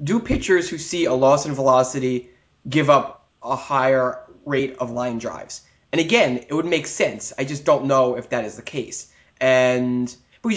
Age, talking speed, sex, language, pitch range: 20-39, 185 wpm, male, English, 125-155 Hz